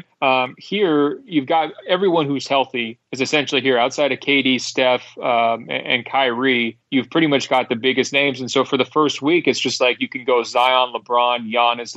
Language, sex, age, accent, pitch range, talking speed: English, male, 30-49, American, 125-145 Hz, 195 wpm